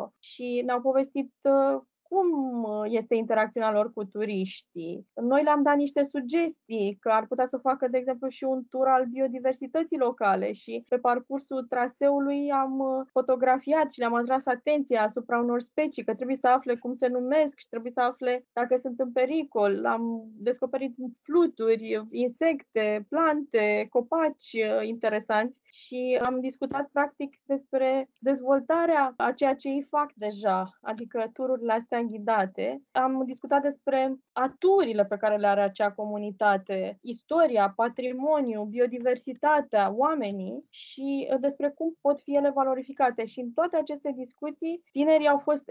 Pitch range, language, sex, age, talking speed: 230-275 Hz, Romanian, female, 20-39, 140 wpm